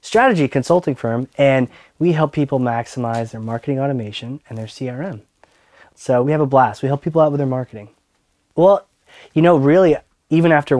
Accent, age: American, 20-39